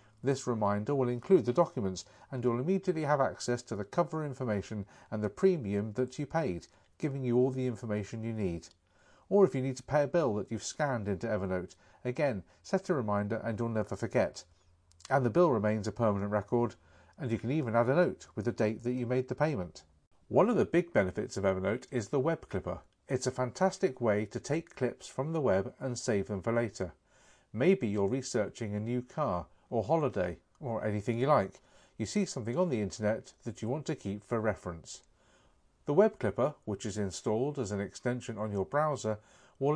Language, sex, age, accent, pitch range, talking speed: English, male, 40-59, British, 105-135 Hz, 205 wpm